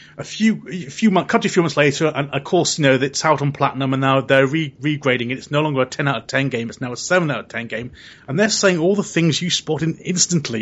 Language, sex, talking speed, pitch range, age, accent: English, male, 300 wpm, 125-175 Hz, 30-49, British